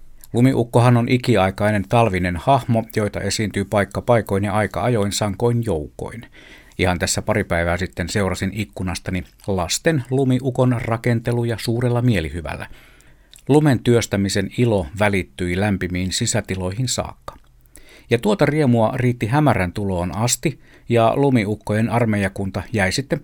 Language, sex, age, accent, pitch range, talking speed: Finnish, male, 60-79, native, 95-120 Hz, 115 wpm